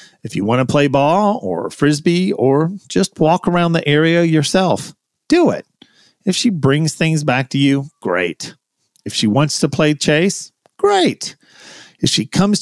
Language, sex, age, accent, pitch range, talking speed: English, male, 40-59, American, 120-185 Hz, 165 wpm